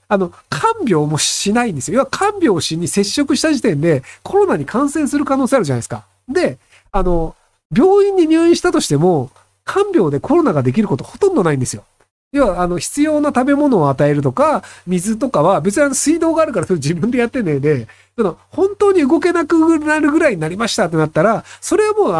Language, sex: Japanese, male